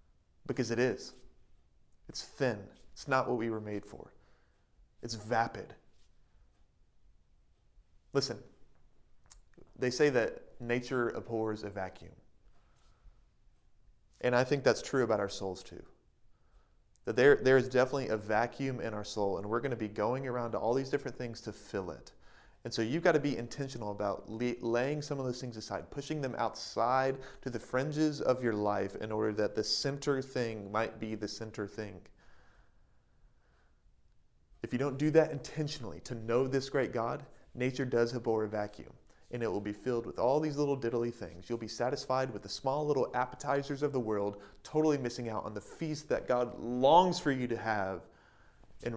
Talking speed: 175 wpm